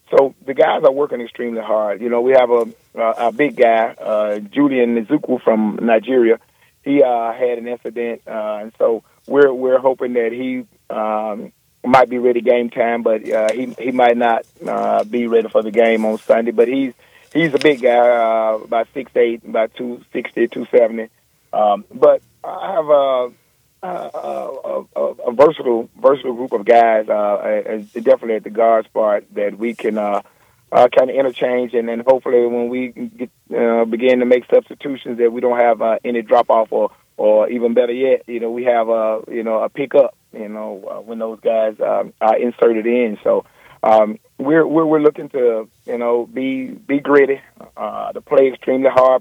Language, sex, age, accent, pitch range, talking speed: English, male, 40-59, American, 115-130 Hz, 190 wpm